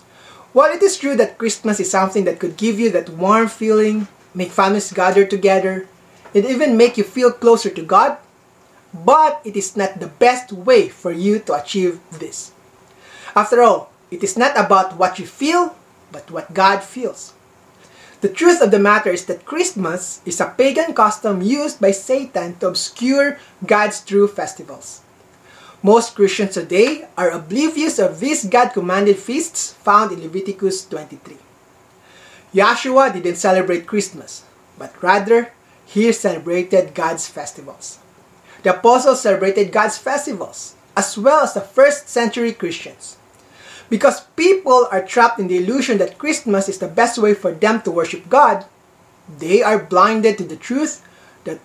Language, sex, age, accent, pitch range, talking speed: English, male, 20-39, Filipino, 185-240 Hz, 155 wpm